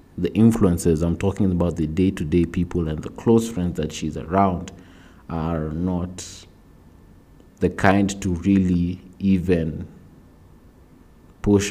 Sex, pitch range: male, 80-95 Hz